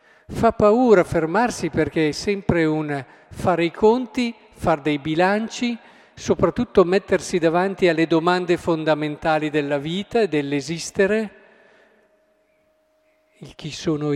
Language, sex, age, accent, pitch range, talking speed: Italian, male, 50-69, native, 155-210 Hz, 110 wpm